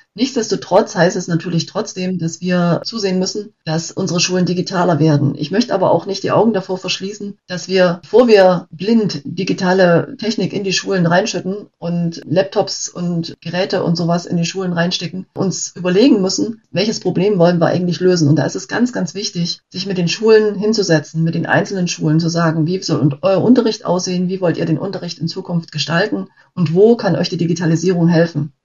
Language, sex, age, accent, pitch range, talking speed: German, female, 30-49, German, 165-190 Hz, 190 wpm